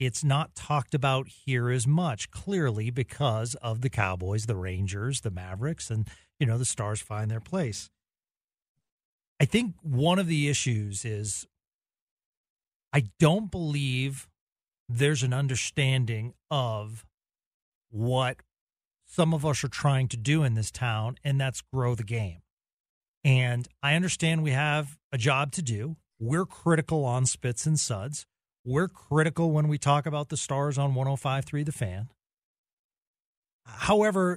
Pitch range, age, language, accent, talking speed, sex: 120-160 Hz, 40-59, English, American, 145 wpm, male